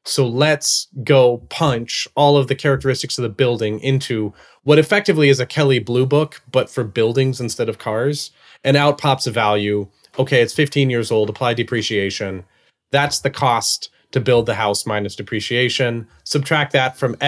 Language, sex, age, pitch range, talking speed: English, male, 30-49, 115-145 Hz, 170 wpm